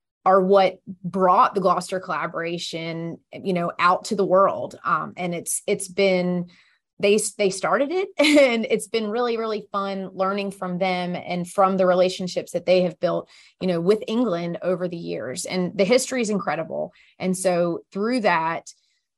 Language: English